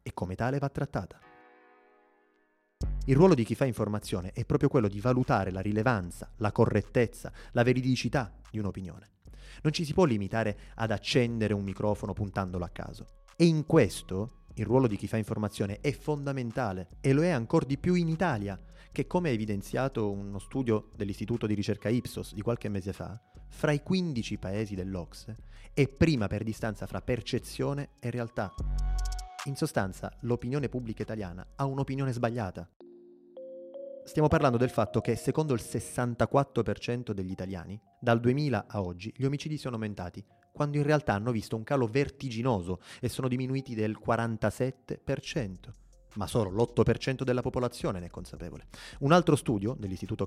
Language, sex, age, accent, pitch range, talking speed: Italian, male, 30-49, native, 100-135 Hz, 160 wpm